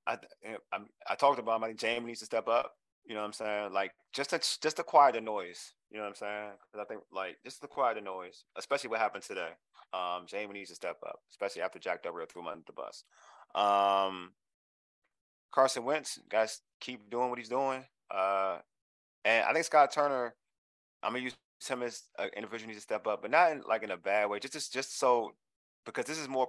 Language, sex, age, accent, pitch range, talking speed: English, male, 20-39, American, 105-155 Hz, 230 wpm